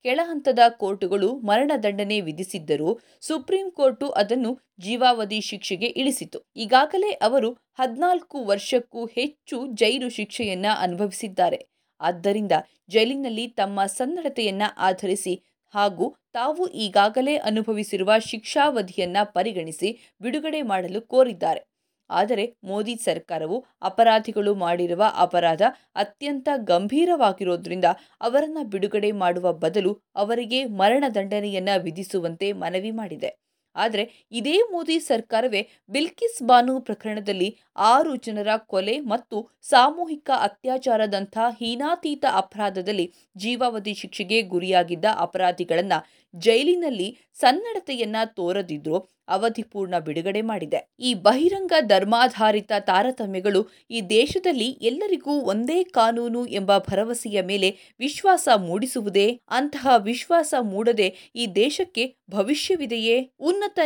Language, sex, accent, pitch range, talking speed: Kannada, female, native, 200-265 Hz, 90 wpm